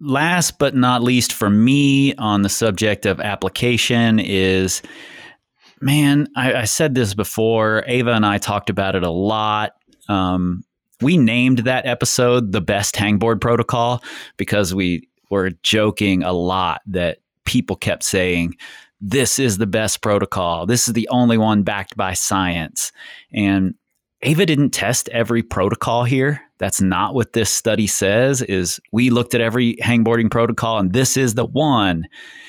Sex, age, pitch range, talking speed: male, 30-49, 95-120 Hz, 155 wpm